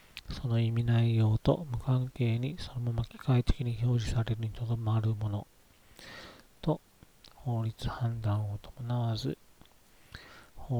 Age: 40-59